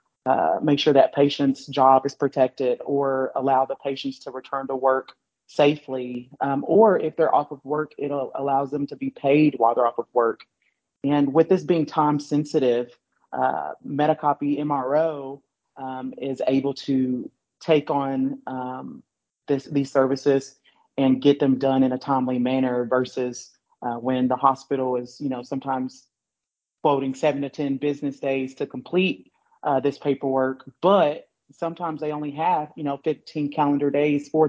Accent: American